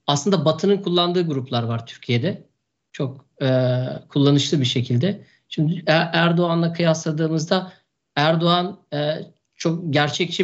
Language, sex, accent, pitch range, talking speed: Turkish, male, native, 150-185 Hz, 105 wpm